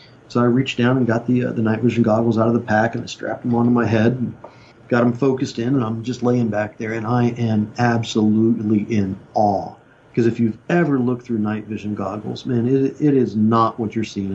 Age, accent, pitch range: 40-59, American, 110-125 Hz